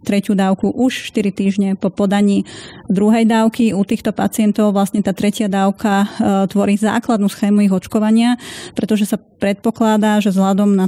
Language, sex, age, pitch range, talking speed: Slovak, female, 30-49, 195-220 Hz, 150 wpm